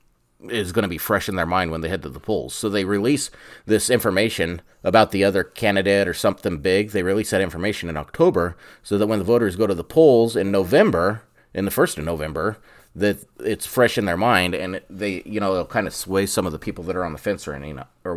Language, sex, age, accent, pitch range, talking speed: English, male, 30-49, American, 95-120 Hz, 240 wpm